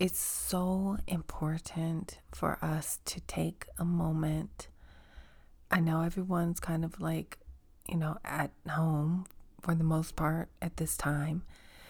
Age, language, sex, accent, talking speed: 30-49, English, female, American, 130 wpm